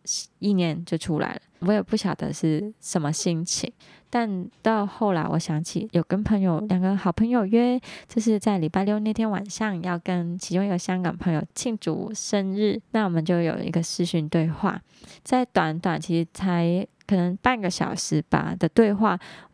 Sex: female